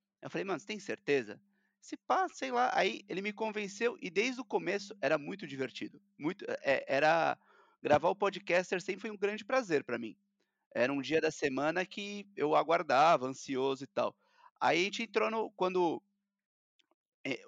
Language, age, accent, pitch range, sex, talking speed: Portuguese, 30-49, Brazilian, 130-195 Hz, male, 180 wpm